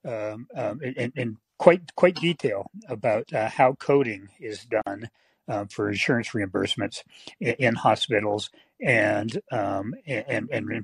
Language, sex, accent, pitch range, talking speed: English, male, American, 110-140 Hz, 145 wpm